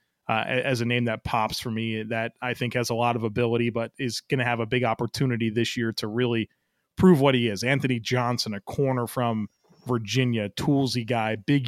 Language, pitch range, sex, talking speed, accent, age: English, 120-150 Hz, male, 205 wpm, American, 30-49